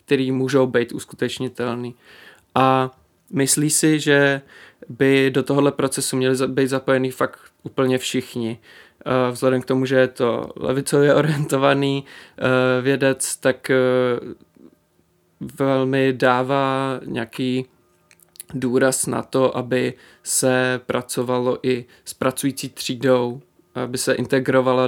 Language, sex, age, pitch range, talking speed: Czech, male, 20-39, 125-135 Hz, 105 wpm